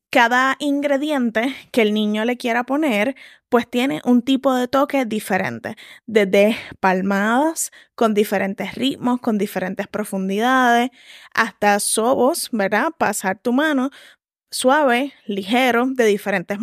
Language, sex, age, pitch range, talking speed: Spanish, female, 10-29, 210-265 Hz, 120 wpm